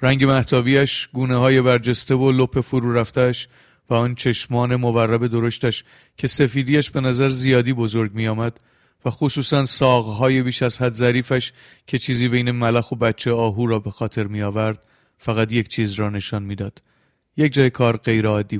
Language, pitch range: Persian, 115-140 Hz